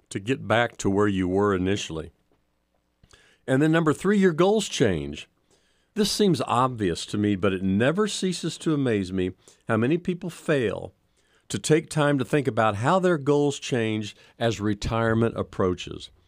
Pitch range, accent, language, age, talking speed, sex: 95-140 Hz, American, English, 50-69, 160 wpm, male